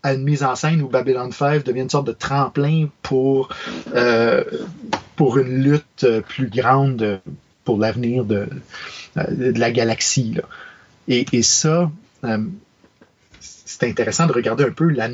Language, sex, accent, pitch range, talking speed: French, male, Canadian, 120-150 Hz, 145 wpm